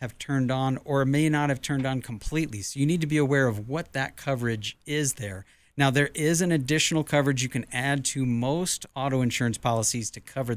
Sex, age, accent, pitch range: male, 50-69, American, 110-135 Hz